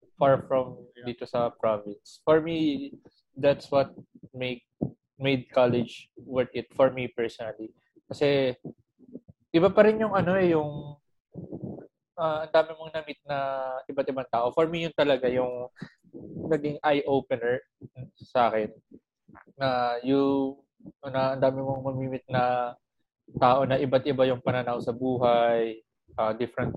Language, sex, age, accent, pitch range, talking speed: Filipino, male, 20-39, native, 125-145 Hz, 130 wpm